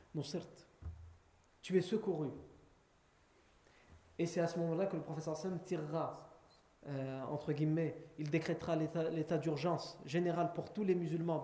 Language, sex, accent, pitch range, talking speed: French, male, French, 155-205 Hz, 145 wpm